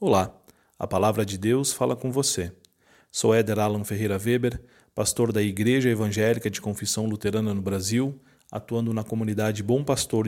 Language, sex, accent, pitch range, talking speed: Portuguese, male, Brazilian, 105-125 Hz, 160 wpm